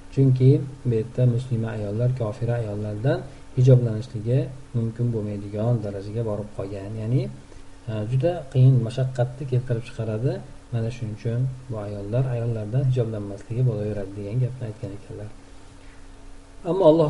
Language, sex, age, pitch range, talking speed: Russian, male, 50-69, 110-135 Hz, 135 wpm